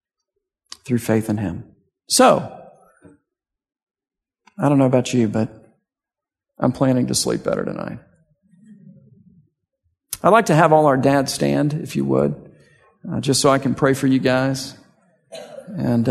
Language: English